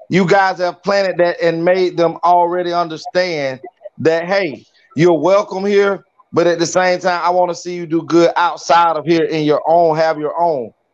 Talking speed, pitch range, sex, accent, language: 195 wpm, 175-230 Hz, male, American, English